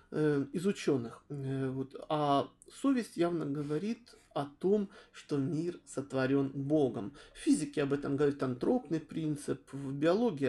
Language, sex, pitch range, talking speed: Russian, male, 140-180 Hz, 120 wpm